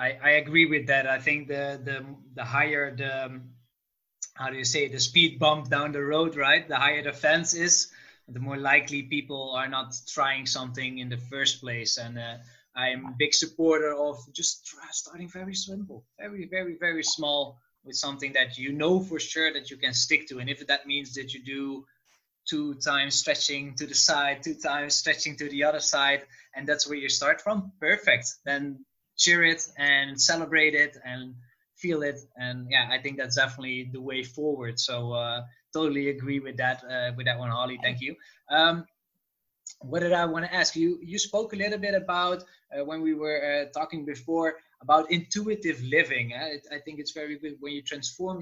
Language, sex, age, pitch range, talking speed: English, male, 20-39, 130-160 Hz, 200 wpm